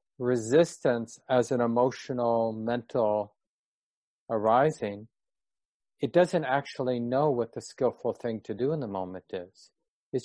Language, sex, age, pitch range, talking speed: English, male, 50-69, 110-130 Hz, 125 wpm